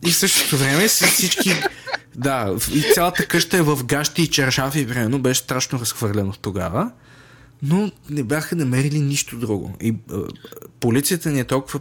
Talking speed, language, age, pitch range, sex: 165 wpm, Bulgarian, 20-39, 110-150 Hz, male